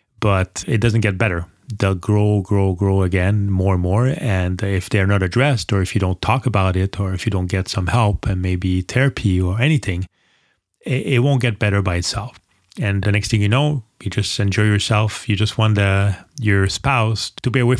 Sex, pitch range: male, 95-115 Hz